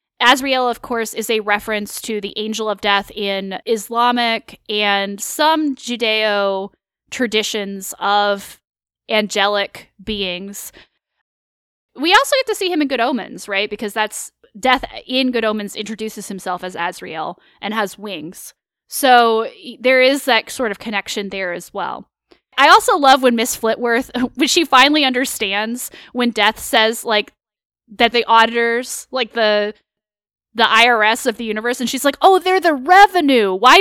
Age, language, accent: 10-29, English, American